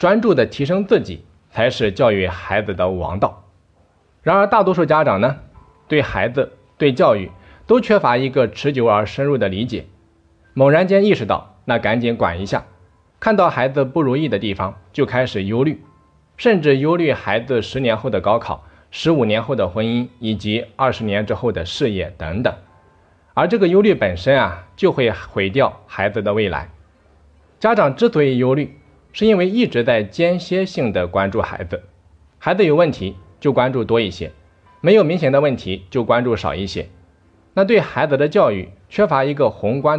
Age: 20-39